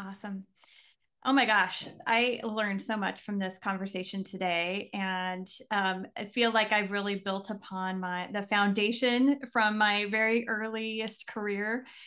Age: 30-49